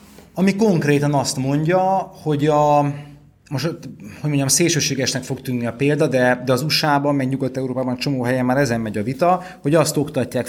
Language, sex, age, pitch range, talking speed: Hungarian, male, 30-49, 110-140 Hz, 170 wpm